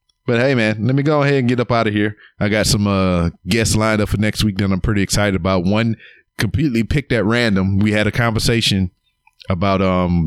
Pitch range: 95-120 Hz